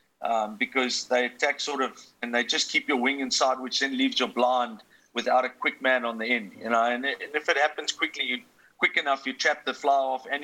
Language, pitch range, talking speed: English, 125-140 Hz, 230 wpm